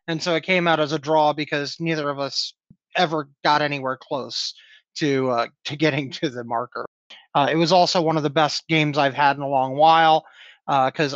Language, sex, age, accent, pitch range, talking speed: English, male, 30-49, American, 140-170 Hz, 210 wpm